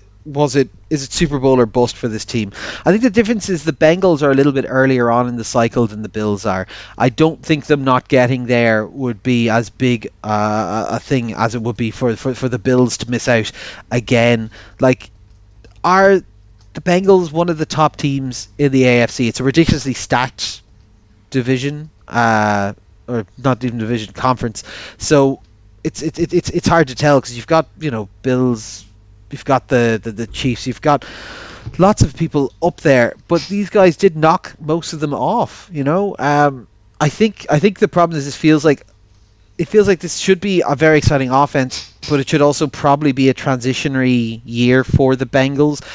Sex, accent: male, Irish